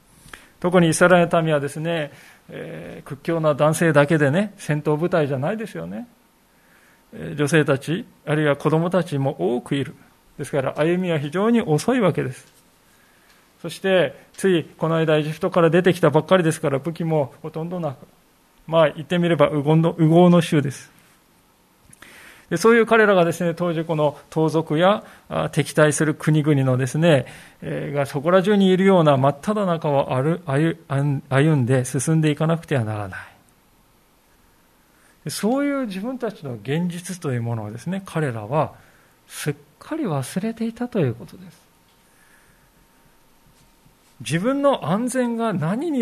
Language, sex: Japanese, male